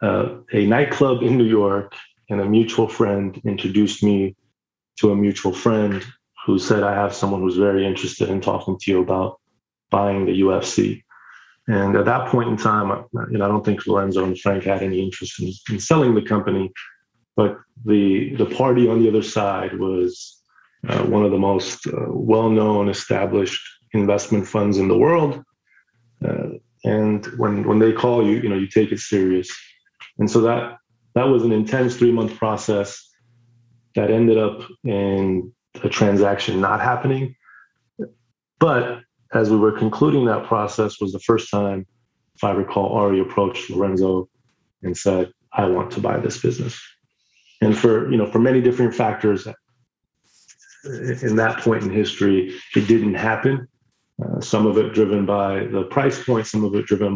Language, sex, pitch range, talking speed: English, male, 100-120 Hz, 165 wpm